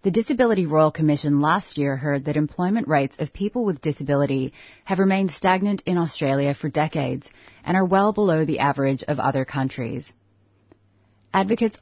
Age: 30-49